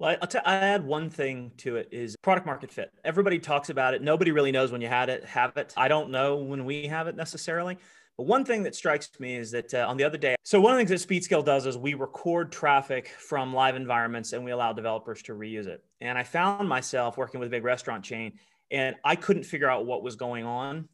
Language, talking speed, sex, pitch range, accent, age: English, 245 wpm, male, 125-160 Hz, American, 30-49